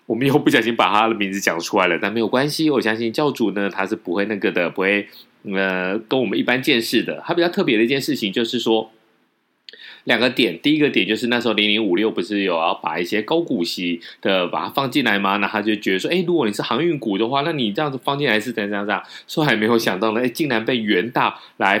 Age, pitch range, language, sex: 20-39, 100-125 Hz, Chinese, male